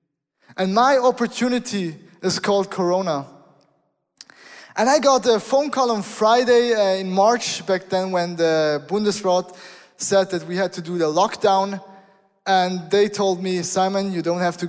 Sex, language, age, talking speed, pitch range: male, English, 20-39, 160 wpm, 185-235 Hz